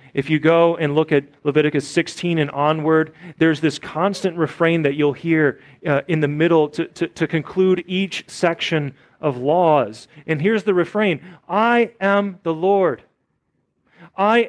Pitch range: 160-205 Hz